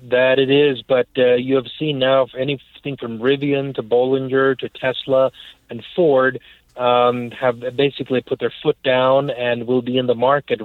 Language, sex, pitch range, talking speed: English, male, 120-135 Hz, 180 wpm